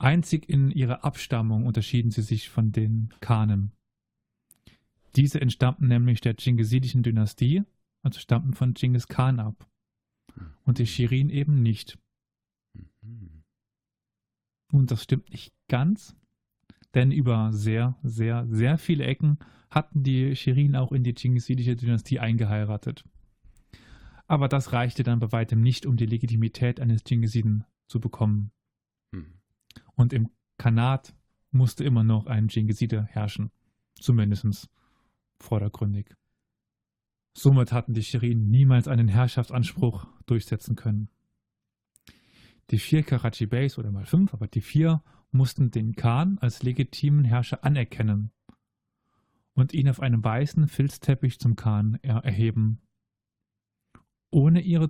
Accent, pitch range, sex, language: German, 110-130 Hz, male, German